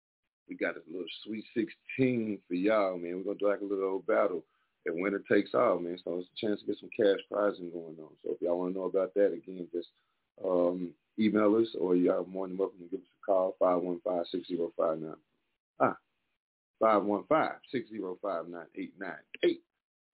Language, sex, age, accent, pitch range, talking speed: English, male, 40-59, American, 90-110 Hz, 180 wpm